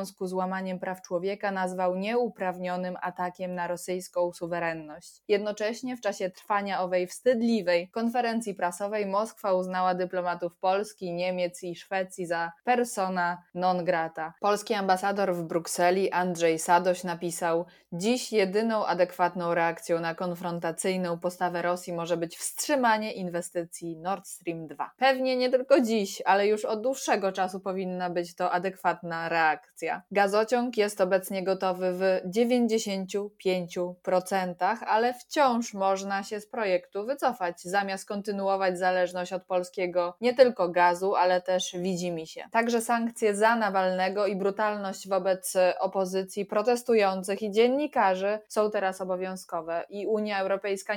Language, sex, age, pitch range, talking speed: Polish, female, 20-39, 180-205 Hz, 125 wpm